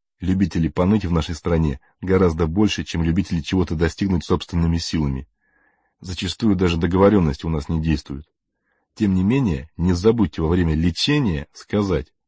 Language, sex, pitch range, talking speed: Russian, male, 80-100 Hz, 140 wpm